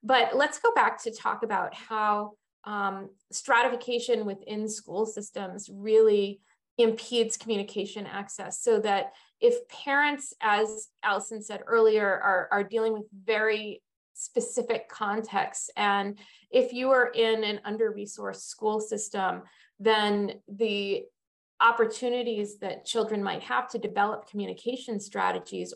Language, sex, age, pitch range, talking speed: English, female, 30-49, 205-250 Hz, 120 wpm